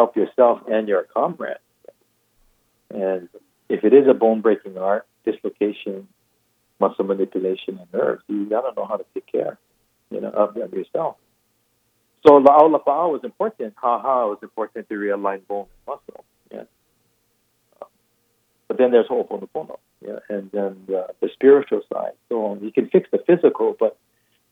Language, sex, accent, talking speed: English, male, American, 145 wpm